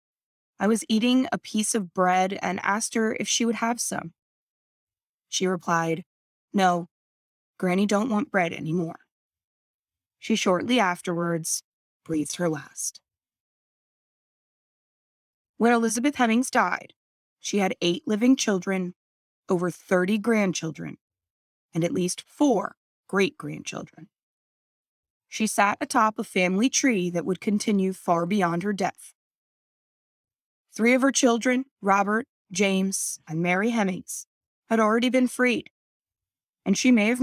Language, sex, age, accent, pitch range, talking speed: English, female, 20-39, American, 180-235 Hz, 120 wpm